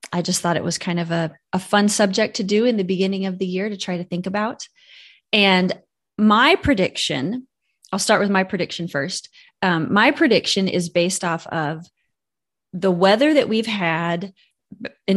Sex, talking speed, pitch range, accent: female, 180 wpm, 175-215 Hz, American